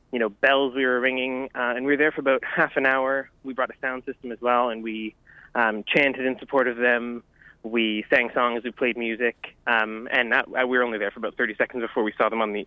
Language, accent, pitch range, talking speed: English, American, 110-125 Hz, 260 wpm